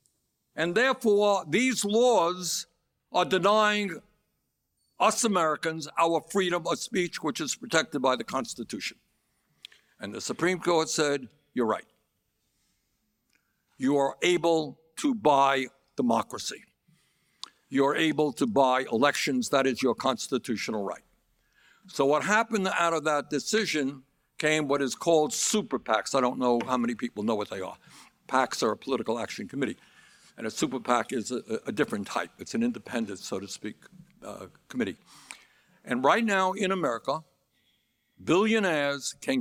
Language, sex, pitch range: English, male, 135-180 Hz